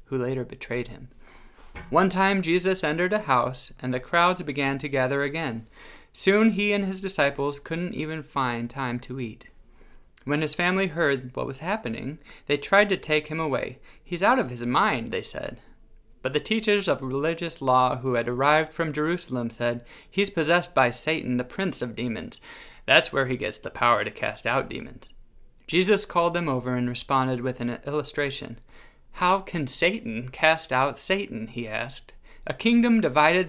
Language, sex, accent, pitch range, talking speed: English, male, American, 125-175 Hz, 175 wpm